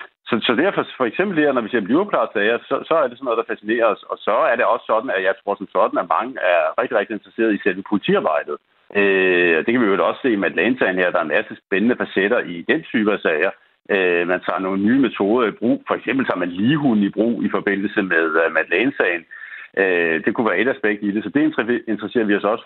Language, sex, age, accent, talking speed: Danish, male, 60-79, native, 250 wpm